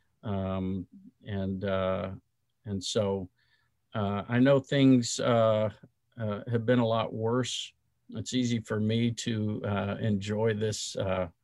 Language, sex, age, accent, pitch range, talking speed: English, male, 50-69, American, 95-115 Hz, 125 wpm